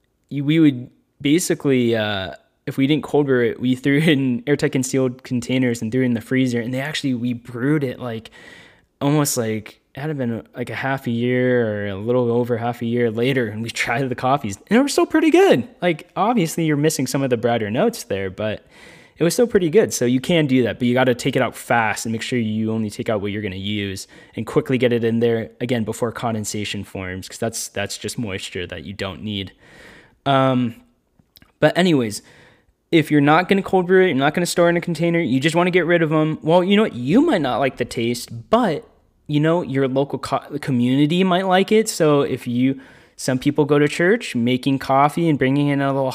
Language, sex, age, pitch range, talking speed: English, male, 10-29, 120-155 Hz, 235 wpm